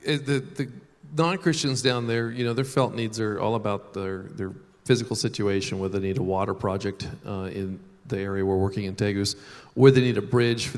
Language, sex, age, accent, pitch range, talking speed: English, male, 40-59, American, 105-125 Hz, 205 wpm